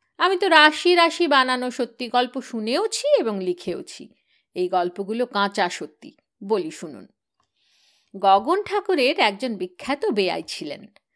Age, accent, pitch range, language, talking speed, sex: 50-69, native, 215-305 Hz, Bengali, 120 wpm, female